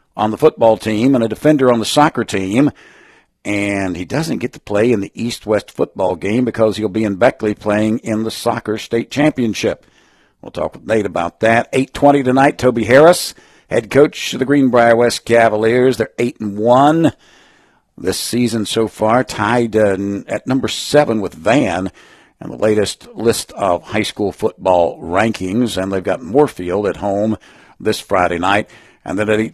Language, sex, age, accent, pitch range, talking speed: English, male, 60-79, American, 100-120 Hz, 175 wpm